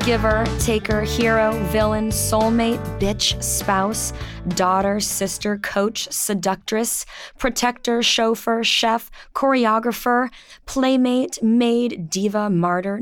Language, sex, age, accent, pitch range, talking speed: English, female, 20-39, American, 190-245 Hz, 90 wpm